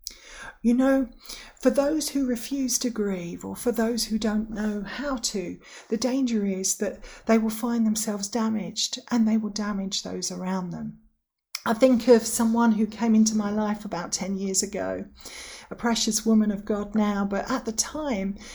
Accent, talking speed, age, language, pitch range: British, 180 wpm, 40-59, English, 200-230 Hz